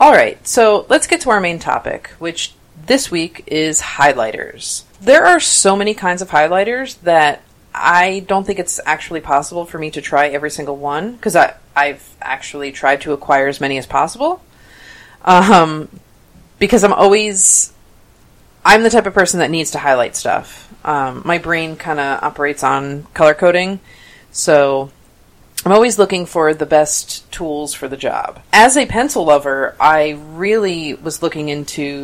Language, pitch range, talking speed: English, 145-195 Hz, 165 wpm